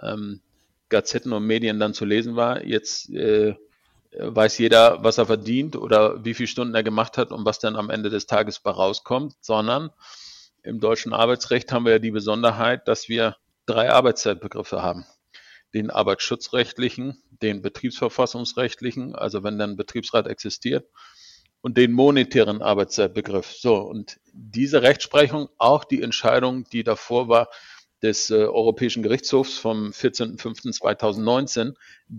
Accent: German